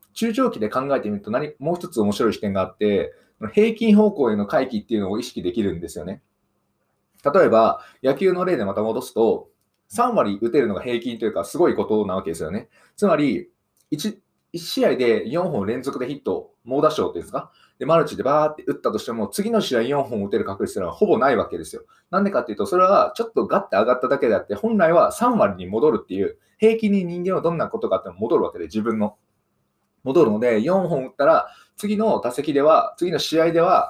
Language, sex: Japanese, male